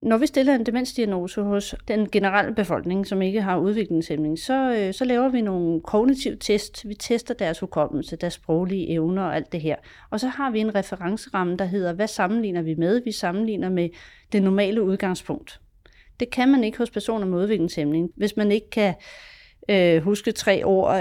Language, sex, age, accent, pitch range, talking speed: Danish, female, 40-59, native, 185-240 Hz, 185 wpm